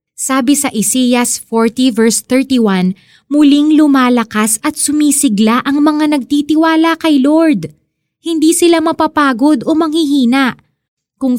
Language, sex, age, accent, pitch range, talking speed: Filipino, female, 20-39, native, 210-290 Hz, 110 wpm